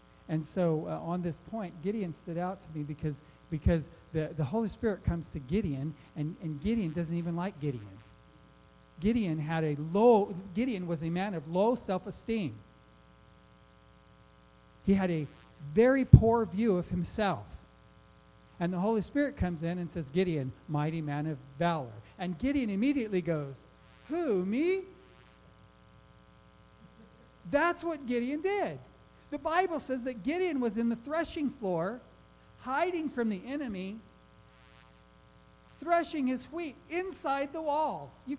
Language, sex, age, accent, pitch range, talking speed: English, male, 50-69, American, 150-235 Hz, 135 wpm